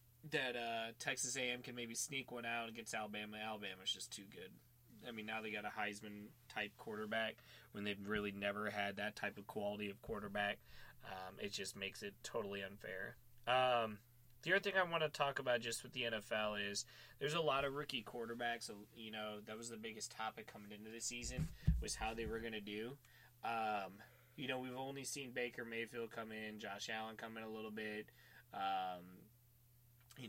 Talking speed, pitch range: 200 wpm, 105-120 Hz